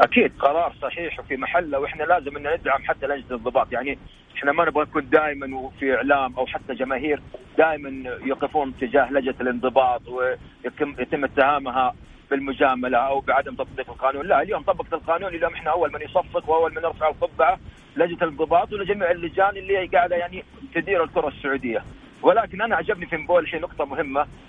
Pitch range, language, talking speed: 145-185 Hz, Arabic, 165 wpm